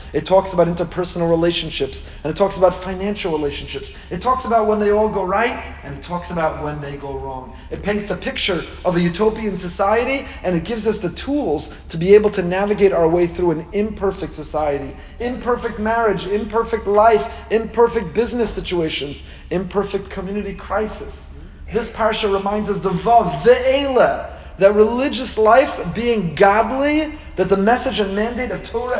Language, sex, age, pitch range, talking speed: English, male, 40-59, 165-215 Hz, 170 wpm